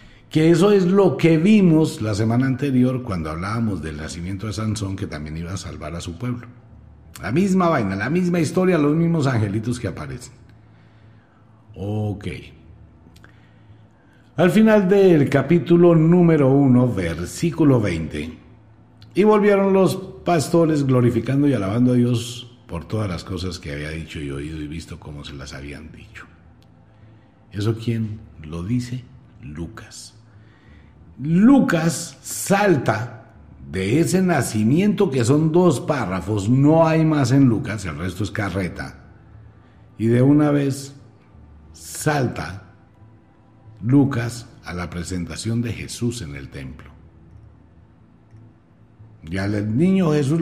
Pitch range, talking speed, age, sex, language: 90-140 Hz, 130 wpm, 60-79, male, Spanish